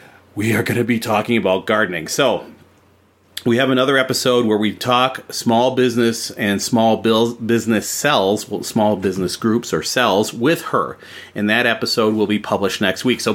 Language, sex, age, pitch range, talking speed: English, male, 30-49, 110-130 Hz, 180 wpm